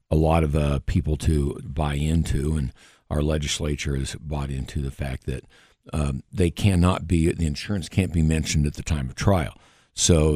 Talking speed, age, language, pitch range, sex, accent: 185 wpm, 60-79, English, 75-95 Hz, male, American